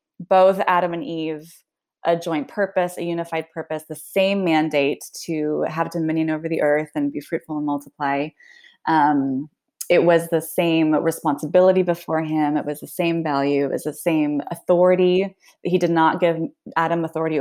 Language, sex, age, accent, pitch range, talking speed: English, female, 20-39, American, 155-190 Hz, 165 wpm